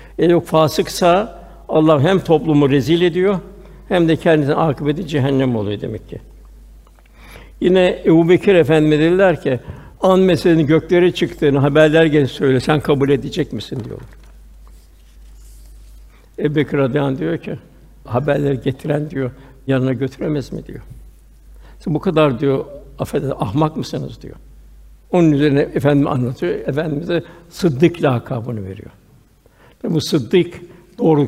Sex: male